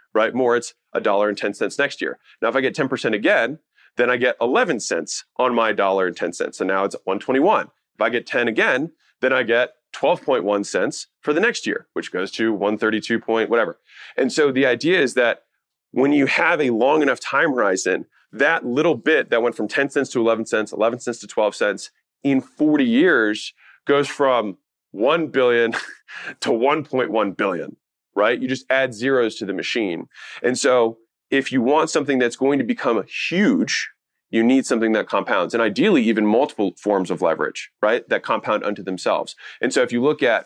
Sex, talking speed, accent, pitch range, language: male, 200 wpm, American, 105-130 Hz, English